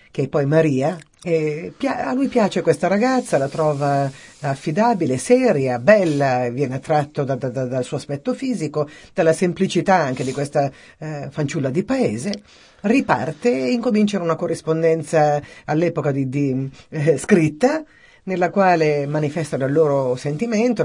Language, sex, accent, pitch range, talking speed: Italian, female, native, 145-190 Hz, 140 wpm